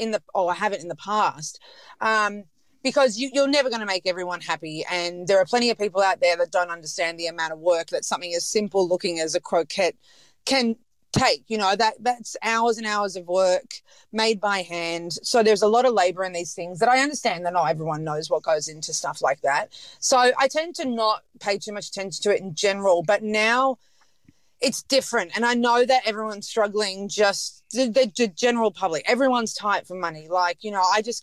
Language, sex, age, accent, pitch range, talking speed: English, female, 30-49, Australian, 180-245 Hz, 210 wpm